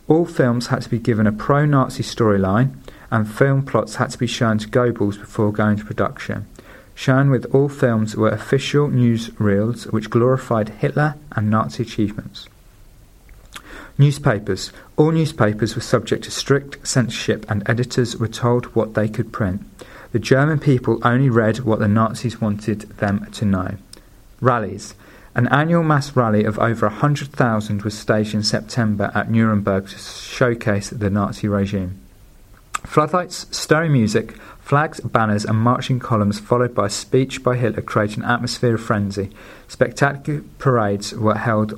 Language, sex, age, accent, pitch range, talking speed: English, male, 40-59, British, 105-130 Hz, 150 wpm